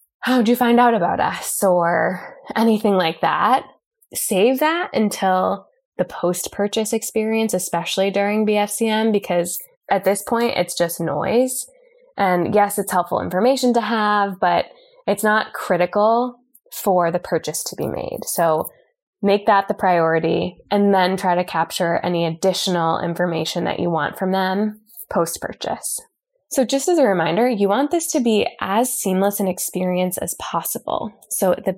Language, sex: English, female